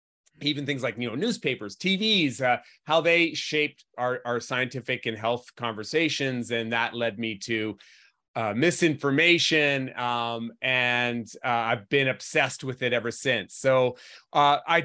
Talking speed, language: 150 wpm, English